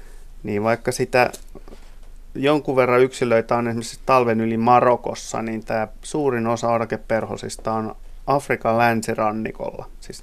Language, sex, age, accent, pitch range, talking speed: Finnish, male, 30-49, native, 110-125 Hz, 115 wpm